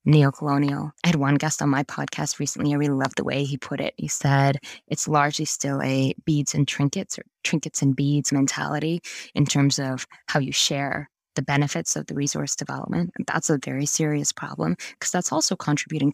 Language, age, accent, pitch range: English, 20-39, American, 145-170 Hz